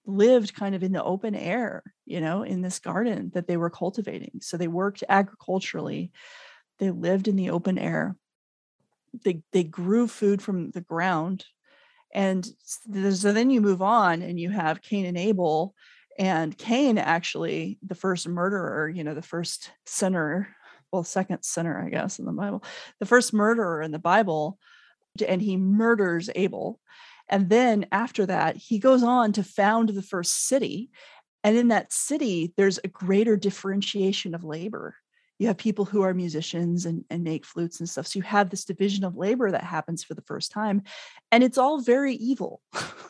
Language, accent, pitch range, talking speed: English, American, 180-230 Hz, 175 wpm